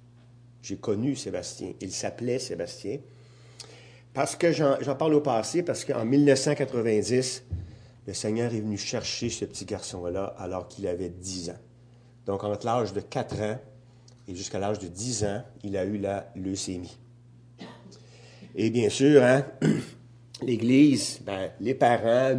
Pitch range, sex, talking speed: 110-140 Hz, male, 145 wpm